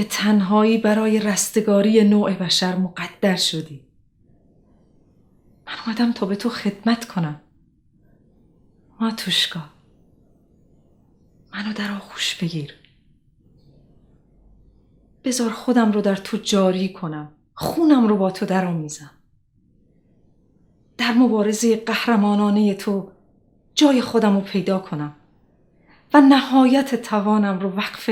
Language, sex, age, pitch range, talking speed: Persian, female, 30-49, 175-230 Hz, 100 wpm